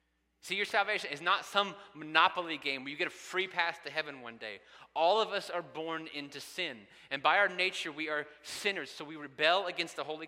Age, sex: 30-49, male